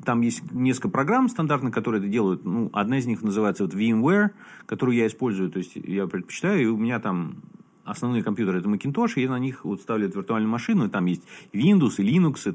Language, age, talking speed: Russian, 30-49, 215 wpm